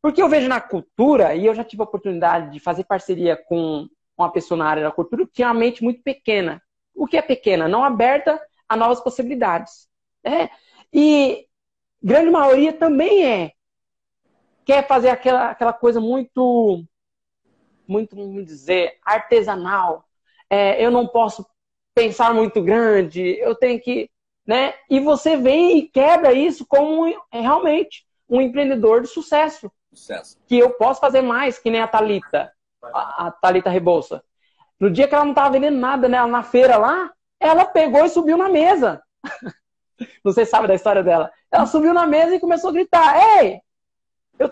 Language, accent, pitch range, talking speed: Portuguese, Brazilian, 220-310 Hz, 160 wpm